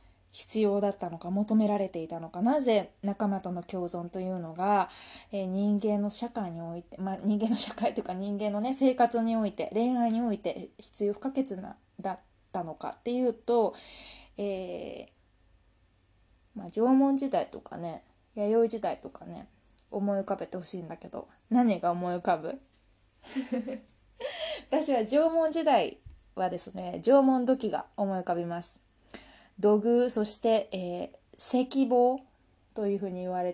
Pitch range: 180-245 Hz